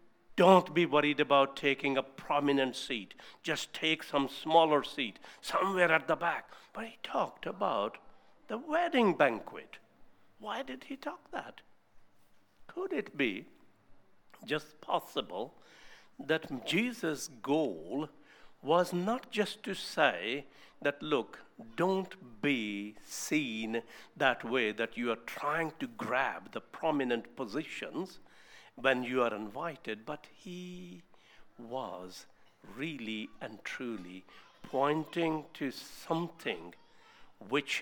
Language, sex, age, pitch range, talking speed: English, male, 60-79, 130-175 Hz, 115 wpm